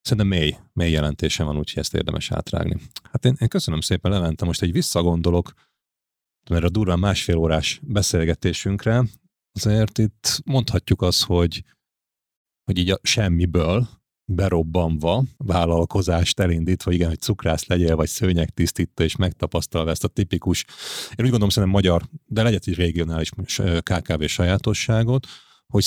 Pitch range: 85-110 Hz